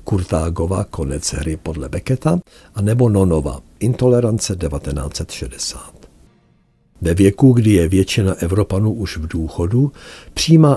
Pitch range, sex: 80-105 Hz, male